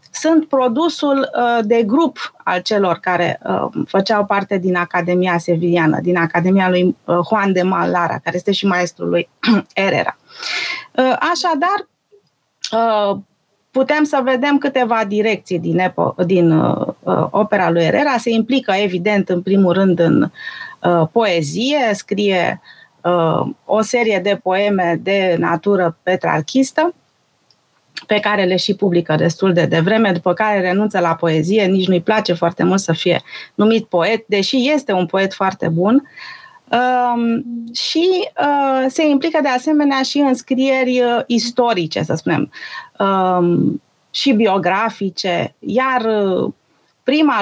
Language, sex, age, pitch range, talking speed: Romanian, female, 30-49, 185-265 Hz, 120 wpm